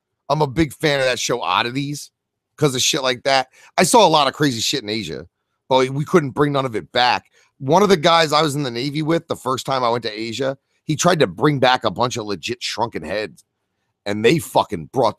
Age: 30-49